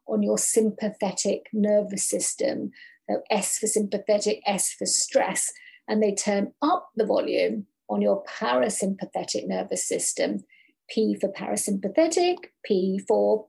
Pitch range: 205-300 Hz